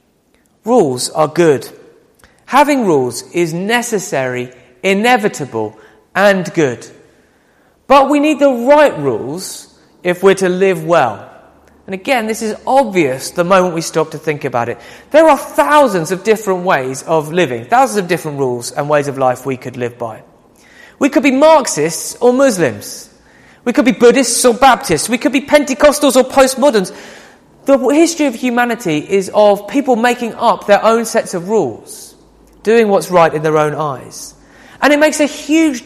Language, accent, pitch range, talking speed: English, British, 165-270 Hz, 165 wpm